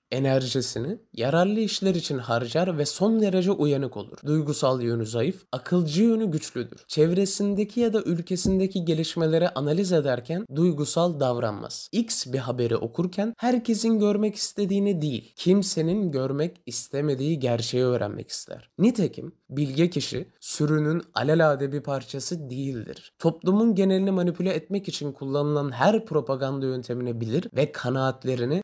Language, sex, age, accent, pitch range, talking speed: Turkish, male, 20-39, native, 130-180 Hz, 125 wpm